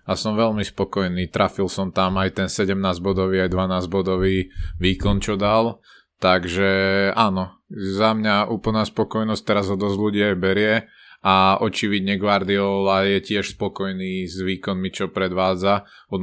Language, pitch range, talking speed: Slovak, 95-100 Hz, 135 wpm